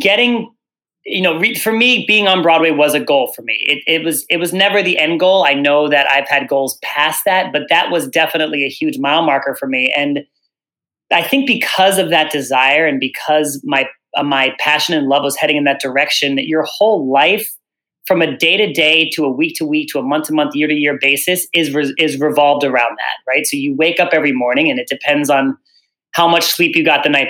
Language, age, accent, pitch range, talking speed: English, 30-49, American, 140-170 Hz, 235 wpm